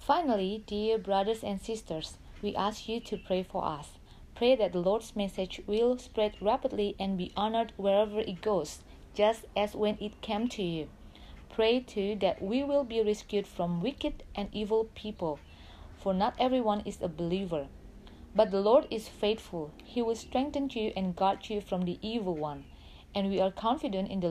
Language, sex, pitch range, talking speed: Indonesian, female, 180-220 Hz, 180 wpm